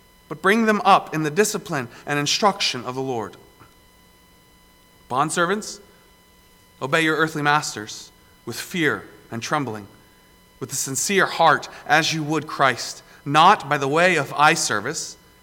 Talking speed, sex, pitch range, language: 140 wpm, male, 105-160 Hz, English